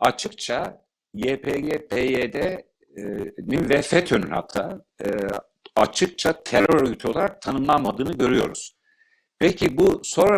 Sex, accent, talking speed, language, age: male, native, 100 wpm, Turkish, 60-79